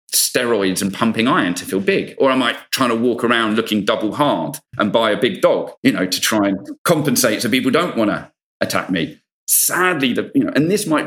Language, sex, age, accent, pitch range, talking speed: English, male, 40-59, British, 110-140 Hz, 230 wpm